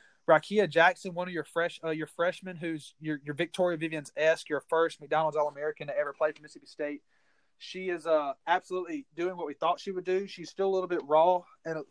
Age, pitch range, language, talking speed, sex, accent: 20-39, 140-175 Hz, English, 210 wpm, male, American